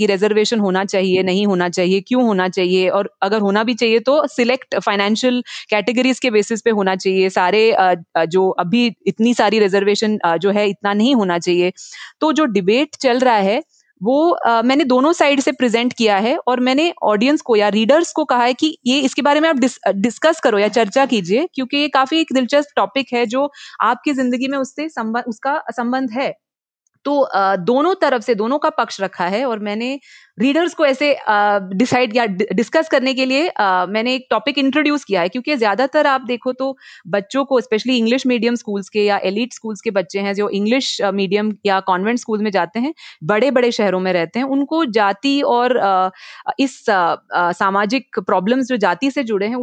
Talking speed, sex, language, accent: 185 wpm, female, Hindi, native